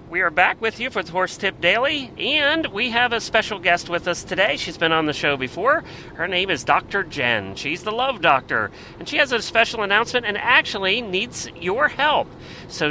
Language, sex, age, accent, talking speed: English, male, 40-59, American, 215 wpm